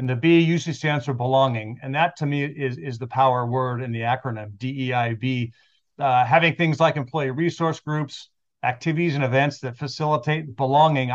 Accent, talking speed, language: American, 170 wpm, English